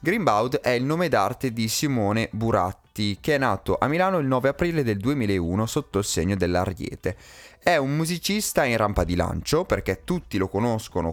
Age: 20-39